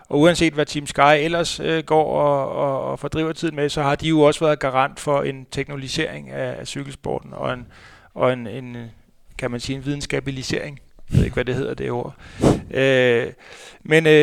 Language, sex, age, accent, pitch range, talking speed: Danish, male, 30-49, native, 130-165 Hz, 180 wpm